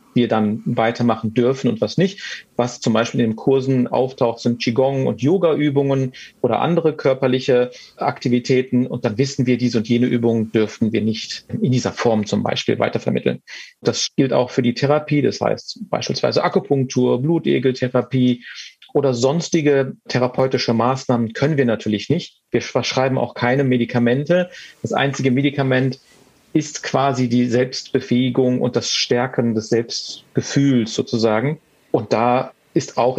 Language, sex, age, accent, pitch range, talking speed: German, male, 40-59, German, 120-145 Hz, 145 wpm